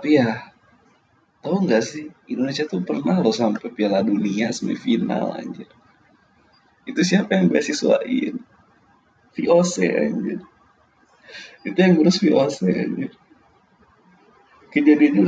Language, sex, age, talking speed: Indonesian, male, 20-39, 100 wpm